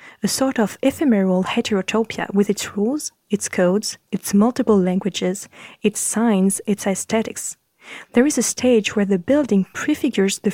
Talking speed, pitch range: 150 wpm, 190-235 Hz